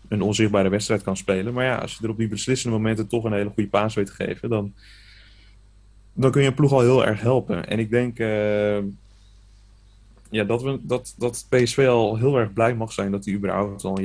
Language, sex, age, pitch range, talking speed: Dutch, male, 30-49, 100-115 Hz, 225 wpm